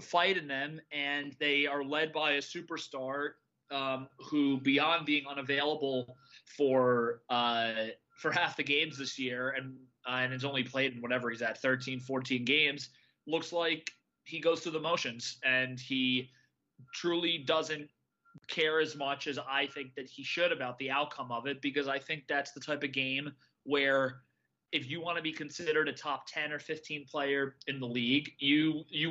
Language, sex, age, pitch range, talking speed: English, male, 30-49, 135-155 Hz, 180 wpm